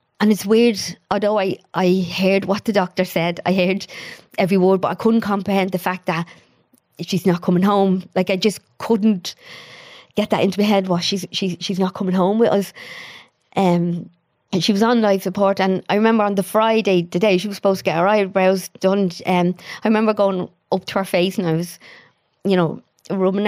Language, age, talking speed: English, 30-49, 210 wpm